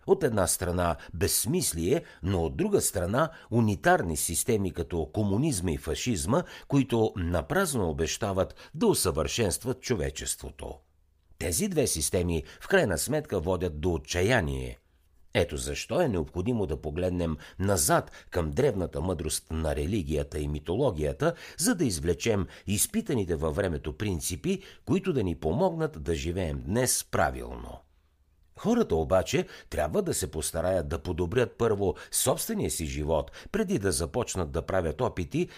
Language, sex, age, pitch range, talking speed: Bulgarian, male, 60-79, 80-115 Hz, 130 wpm